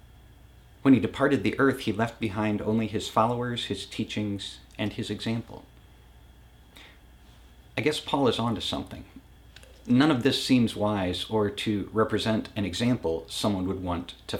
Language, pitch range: English, 95-125 Hz